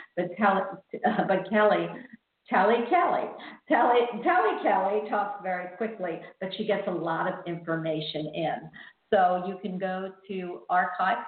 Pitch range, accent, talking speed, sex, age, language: 170-220 Hz, American, 145 wpm, female, 50-69, English